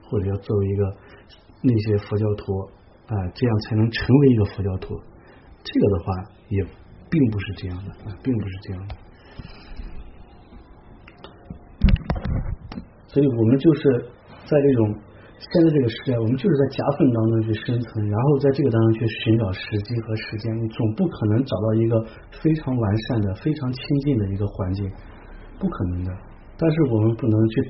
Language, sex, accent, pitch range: English, male, Chinese, 100-115 Hz